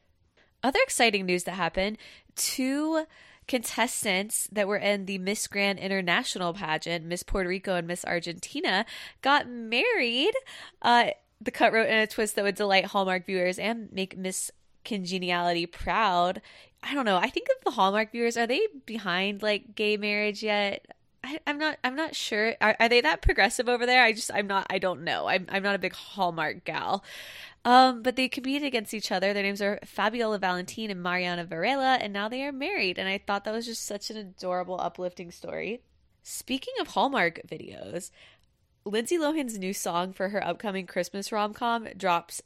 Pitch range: 180-235 Hz